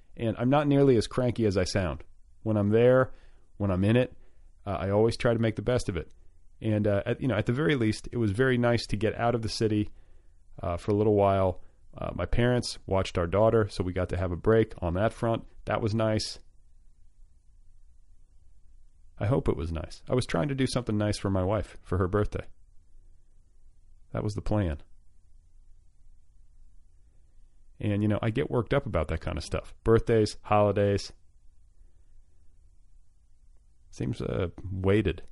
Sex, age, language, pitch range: male, 40-59, English, 85-110 Hz